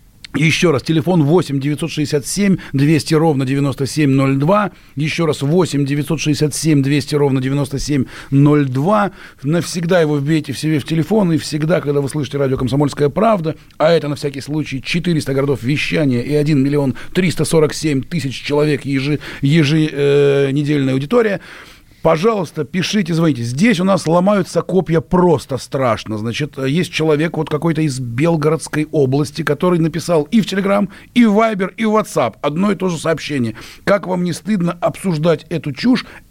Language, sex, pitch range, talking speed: Russian, male, 145-190 Hz, 145 wpm